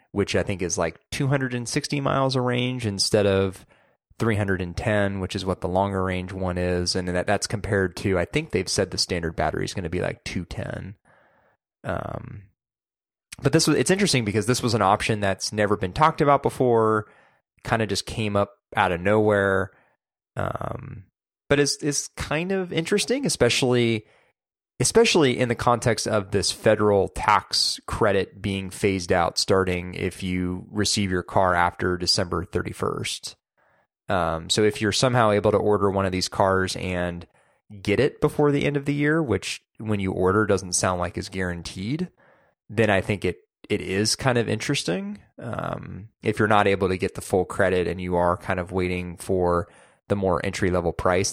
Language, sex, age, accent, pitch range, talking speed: English, male, 20-39, American, 90-120 Hz, 175 wpm